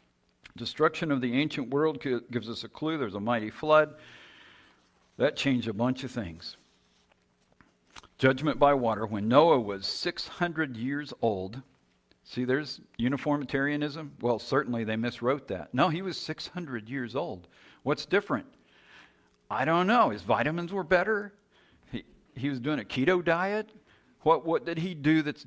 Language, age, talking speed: English, 50-69, 150 wpm